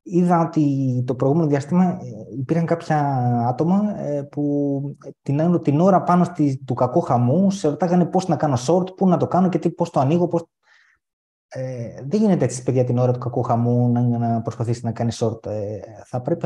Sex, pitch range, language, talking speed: male, 120-160 Hz, Greek, 185 wpm